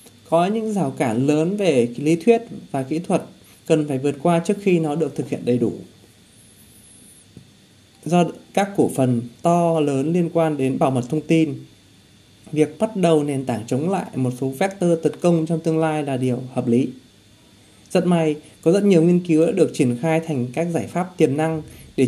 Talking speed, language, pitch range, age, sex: 200 wpm, Vietnamese, 130-170 Hz, 20-39, male